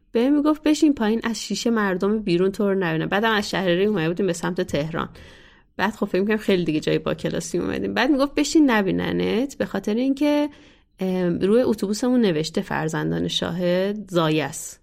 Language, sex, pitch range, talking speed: Persian, female, 170-230 Hz, 160 wpm